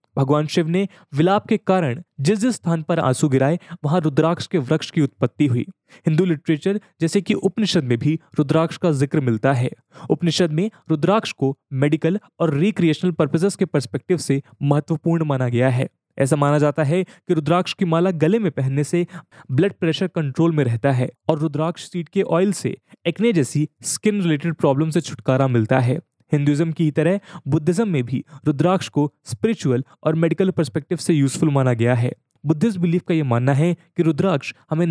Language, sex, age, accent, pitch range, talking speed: English, male, 20-39, Indian, 145-180 Hz, 130 wpm